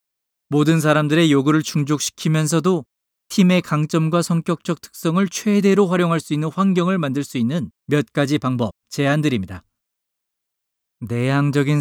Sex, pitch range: male, 125-165 Hz